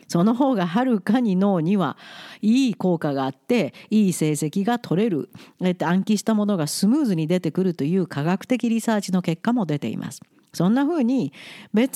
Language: Japanese